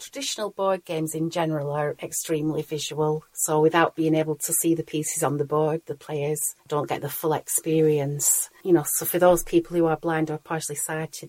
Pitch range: 150-165 Hz